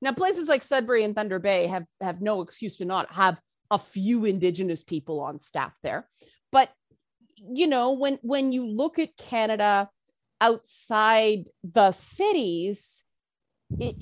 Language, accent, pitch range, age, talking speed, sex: English, American, 190-255 Hz, 30-49, 145 wpm, female